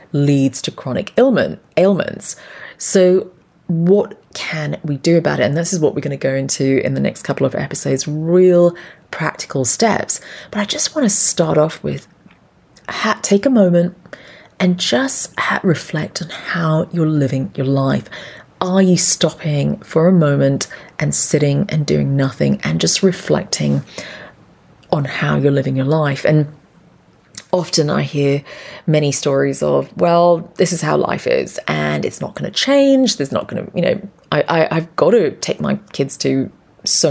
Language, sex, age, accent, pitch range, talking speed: English, female, 30-49, British, 135-180 Hz, 170 wpm